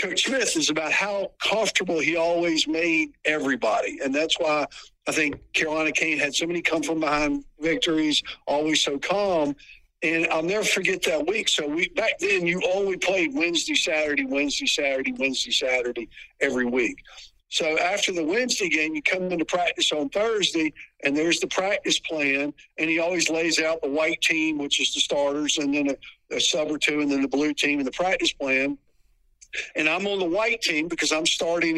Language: English